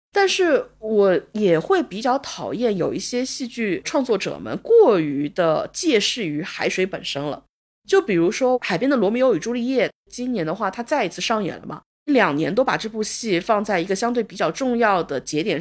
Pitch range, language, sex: 190-320 Hz, Chinese, female